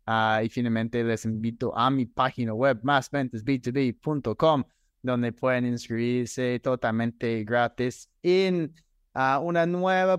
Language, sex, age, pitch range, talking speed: Spanish, male, 20-39, 115-140 Hz, 110 wpm